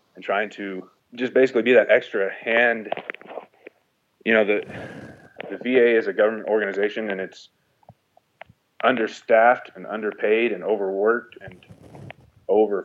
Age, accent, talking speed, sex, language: 30-49, American, 125 wpm, male, English